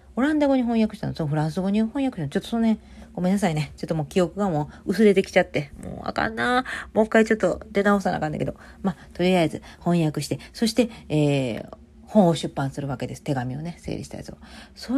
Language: Japanese